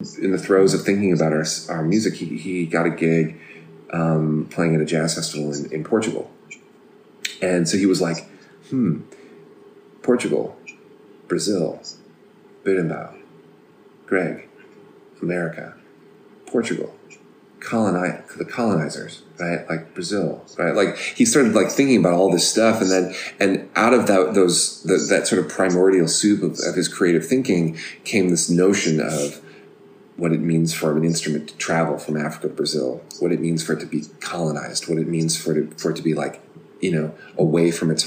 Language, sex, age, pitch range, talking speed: English, male, 30-49, 80-90 Hz, 170 wpm